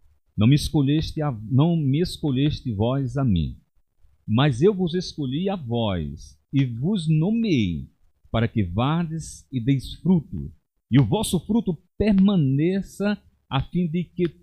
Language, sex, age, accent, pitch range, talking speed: Portuguese, male, 50-69, Brazilian, 90-150 Hz, 140 wpm